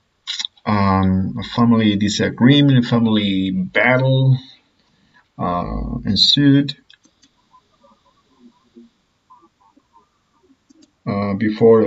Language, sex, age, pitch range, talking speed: English, male, 50-69, 100-135 Hz, 55 wpm